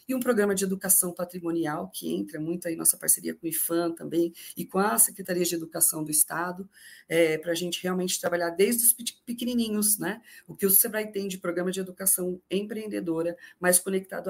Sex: female